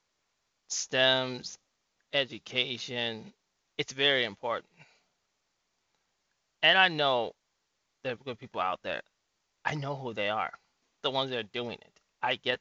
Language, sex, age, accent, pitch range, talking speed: English, male, 20-39, American, 115-140 Hz, 130 wpm